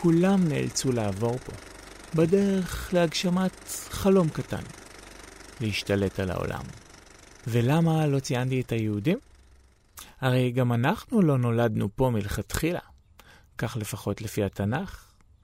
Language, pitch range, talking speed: Hebrew, 105-145 Hz, 105 wpm